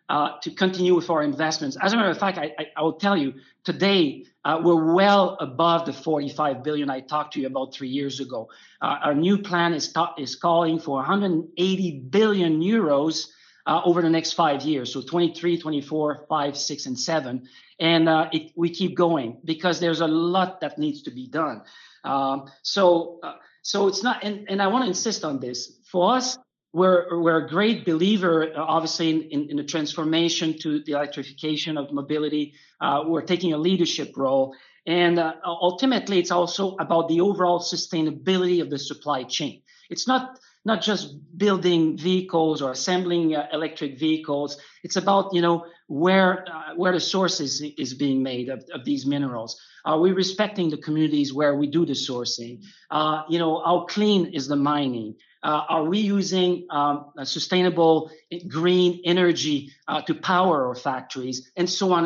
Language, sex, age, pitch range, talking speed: English, male, 40-59, 150-180 Hz, 180 wpm